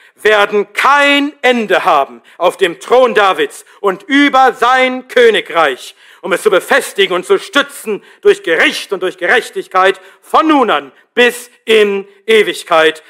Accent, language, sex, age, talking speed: German, German, male, 60-79, 135 wpm